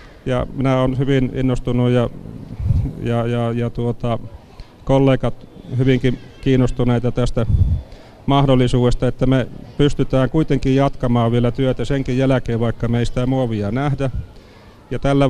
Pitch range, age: 120-140 Hz, 40-59